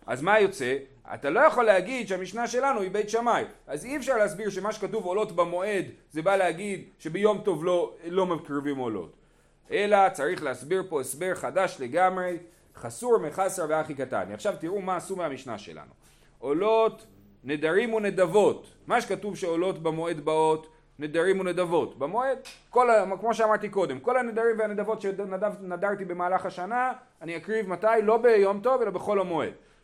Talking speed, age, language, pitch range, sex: 155 wpm, 30-49, Hebrew, 165-220 Hz, male